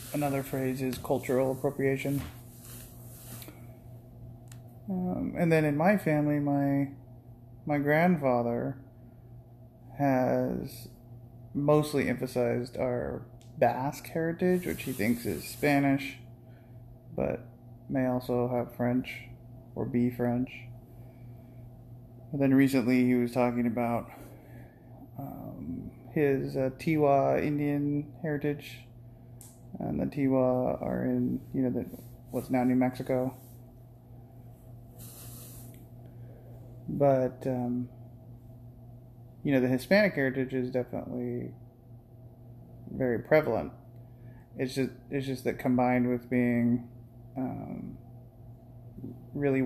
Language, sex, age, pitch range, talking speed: English, male, 30-49, 120-130 Hz, 95 wpm